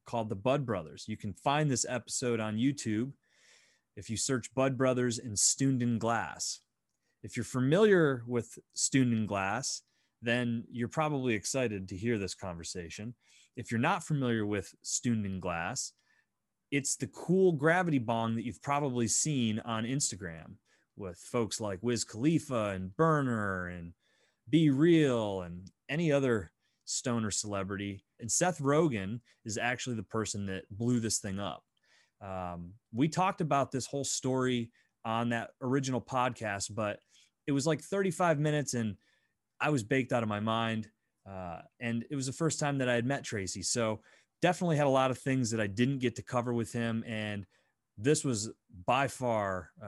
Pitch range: 105-140 Hz